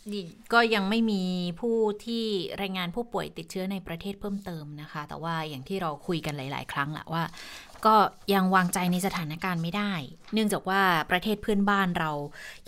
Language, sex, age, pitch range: Thai, female, 20-39, 165-200 Hz